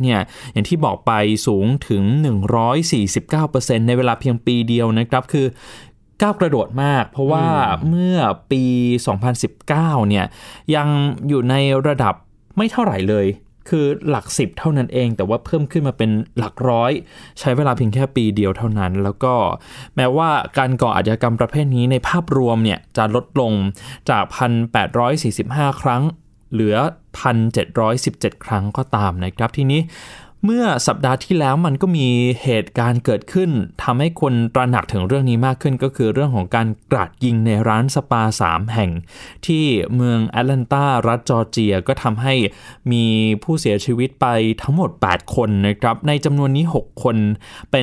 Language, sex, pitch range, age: Thai, male, 110-140 Hz, 20-39